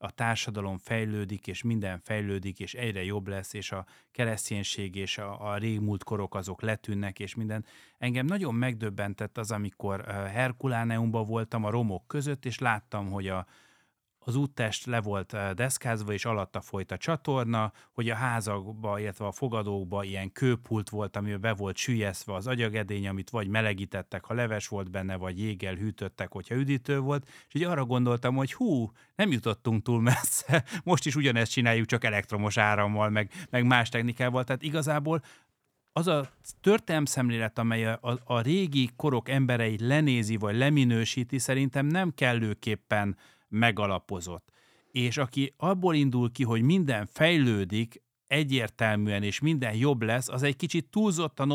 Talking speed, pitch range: 150 wpm, 105-130 Hz